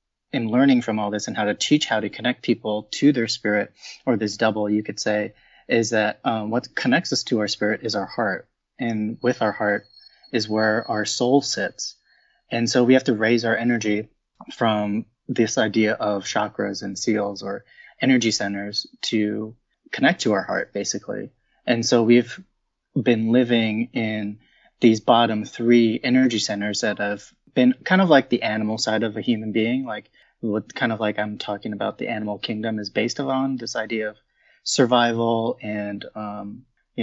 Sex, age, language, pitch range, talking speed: male, 20-39, English, 105-120 Hz, 180 wpm